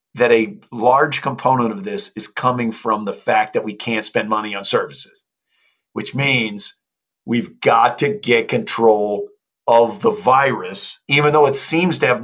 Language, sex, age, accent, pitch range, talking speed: English, male, 50-69, American, 115-145 Hz, 165 wpm